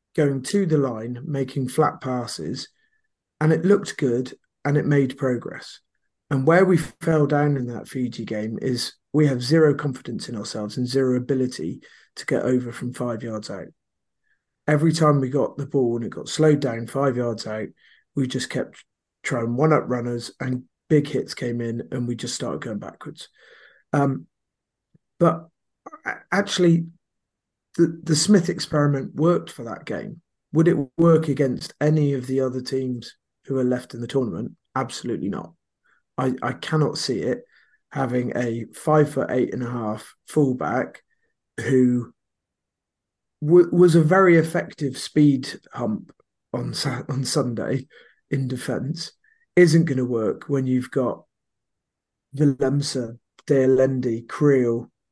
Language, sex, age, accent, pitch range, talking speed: English, male, 30-49, British, 125-150 Hz, 145 wpm